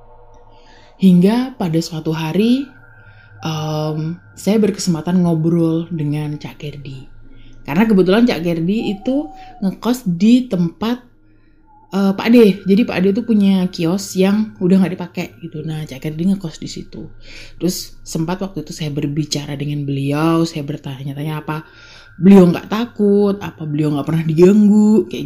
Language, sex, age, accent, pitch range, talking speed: Indonesian, female, 20-39, native, 145-195 Hz, 140 wpm